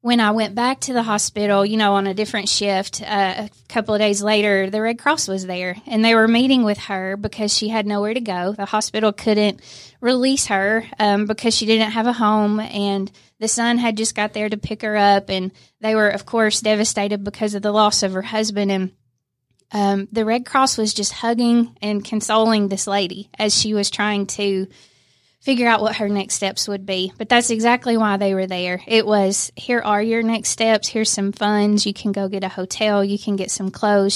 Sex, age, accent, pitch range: female, 20-39, American, 200-225 Hz